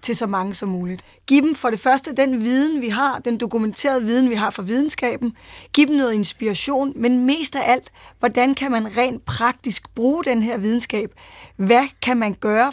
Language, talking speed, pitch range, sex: Danish, 200 wpm, 215-255 Hz, female